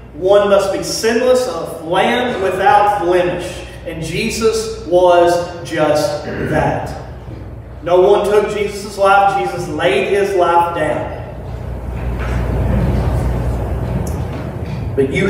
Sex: male